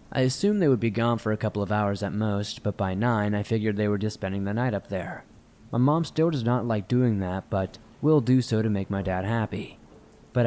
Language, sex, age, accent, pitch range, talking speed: English, male, 20-39, American, 100-125 Hz, 250 wpm